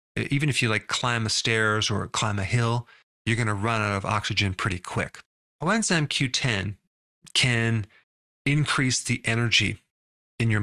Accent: American